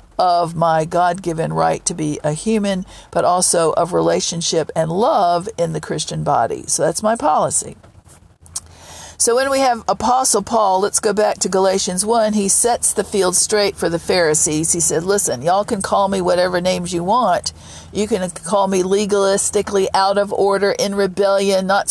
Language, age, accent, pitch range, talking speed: English, 50-69, American, 170-210 Hz, 175 wpm